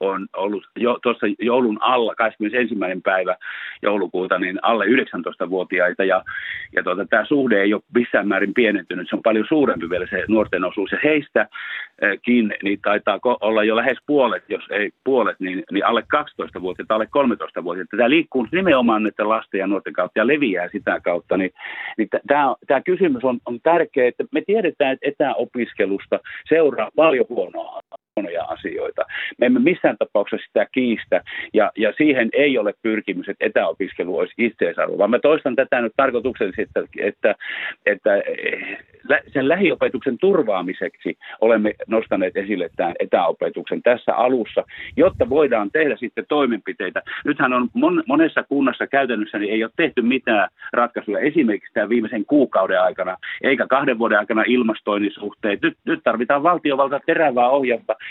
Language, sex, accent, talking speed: Finnish, male, native, 150 wpm